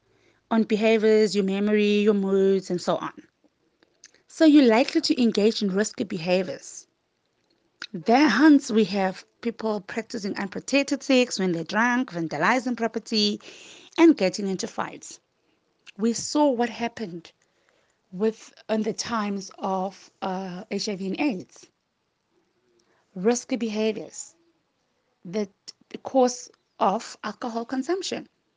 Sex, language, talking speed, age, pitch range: female, English, 115 wpm, 30-49, 195-265 Hz